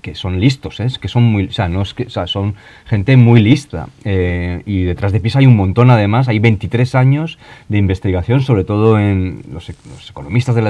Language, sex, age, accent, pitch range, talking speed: Spanish, male, 30-49, Spanish, 100-125 Hz, 175 wpm